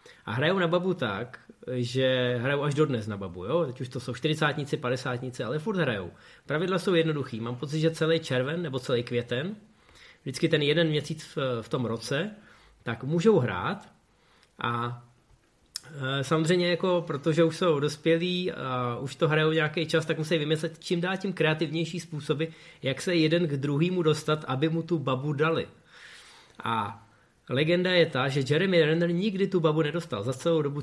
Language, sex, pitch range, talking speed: Czech, male, 125-165 Hz, 170 wpm